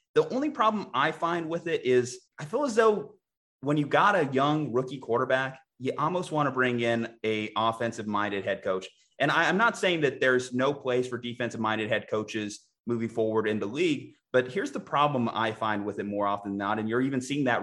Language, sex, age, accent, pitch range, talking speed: English, male, 30-49, American, 110-130 Hz, 215 wpm